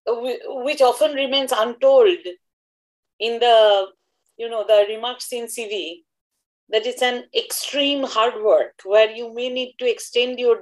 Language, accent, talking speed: Bengali, native, 140 wpm